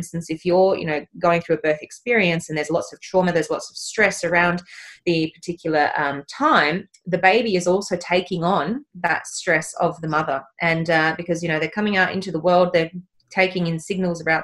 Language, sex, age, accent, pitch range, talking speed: English, female, 20-39, Australian, 155-185 Hz, 210 wpm